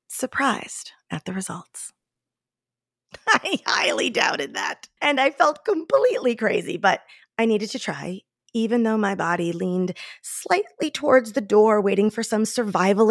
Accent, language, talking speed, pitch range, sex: American, English, 140 wpm, 180-245 Hz, female